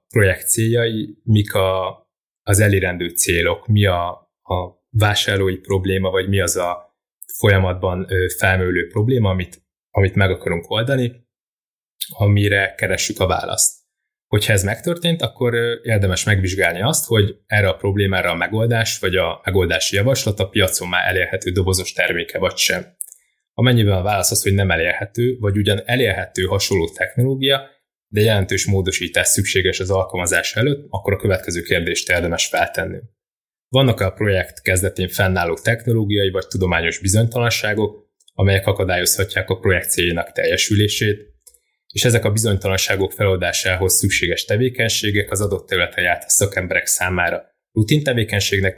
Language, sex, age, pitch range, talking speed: Hungarian, male, 20-39, 95-110 Hz, 130 wpm